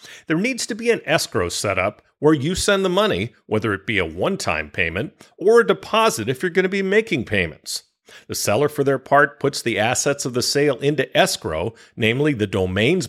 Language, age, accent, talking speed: English, 40-59, American, 200 wpm